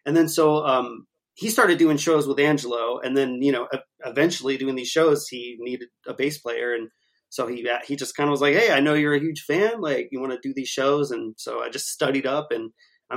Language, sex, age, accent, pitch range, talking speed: English, male, 30-49, American, 125-155 Hz, 245 wpm